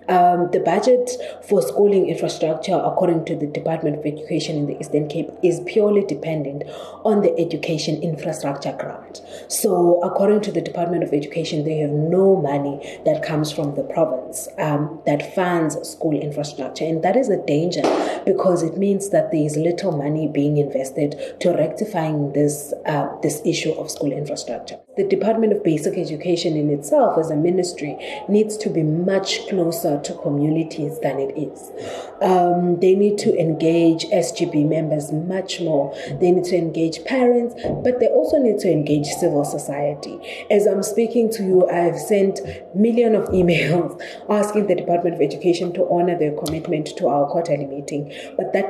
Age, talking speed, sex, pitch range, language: 30-49, 170 wpm, female, 155-190 Hz, English